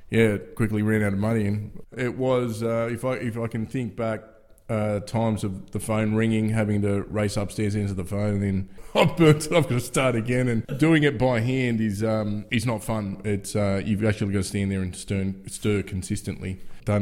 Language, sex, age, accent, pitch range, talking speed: English, male, 20-39, Australian, 95-115 Hz, 220 wpm